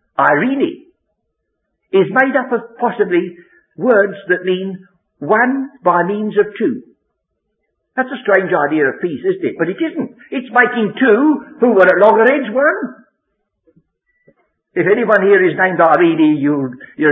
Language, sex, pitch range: English, male, 170-275 Hz